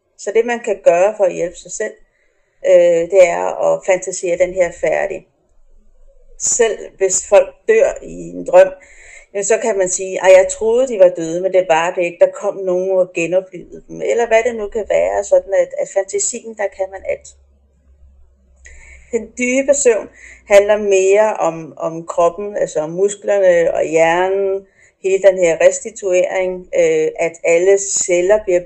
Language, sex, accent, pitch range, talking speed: Danish, female, native, 180-250 Hz, 165 wpm